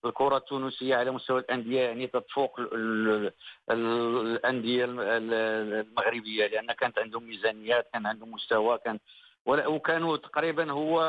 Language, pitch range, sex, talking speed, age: Arabic, 130-160 Hz, male, 110 wpm, 50-69